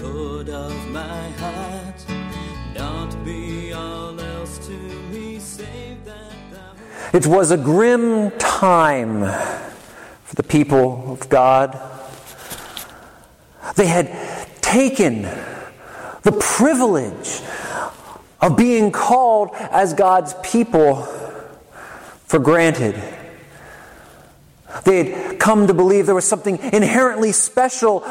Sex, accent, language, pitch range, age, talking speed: male, American, English, 145-200 Hz, 40-59, 70 wpm